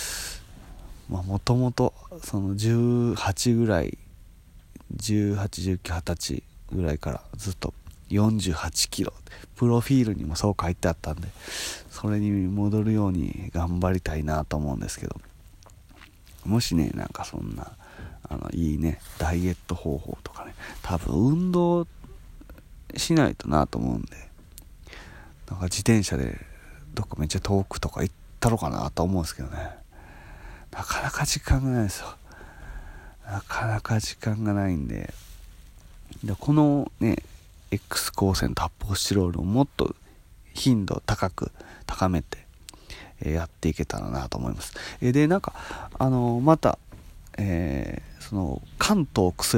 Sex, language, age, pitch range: male, Japanese, 30-49, 80-105 Hz